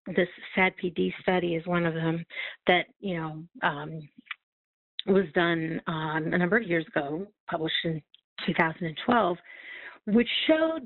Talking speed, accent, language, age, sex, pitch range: 140 wpm, American, English, 50-69, female, 175-230 Hz